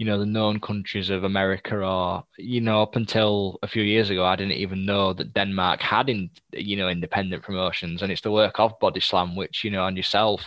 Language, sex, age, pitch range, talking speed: English, male, 10-29, 95-110 Hz, 225 wpm